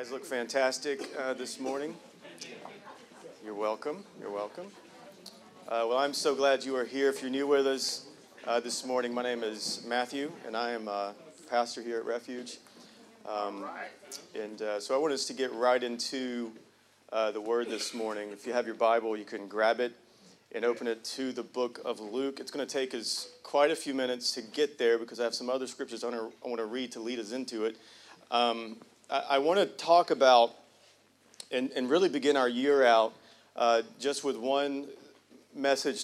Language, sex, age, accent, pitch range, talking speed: English, male, 40-59, American, 115-135 Hz, 195 wpm